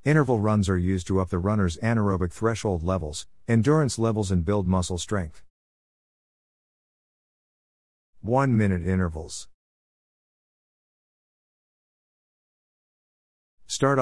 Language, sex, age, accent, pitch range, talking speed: English, male, 50-69, American, 90-110 Hz, 85 wpm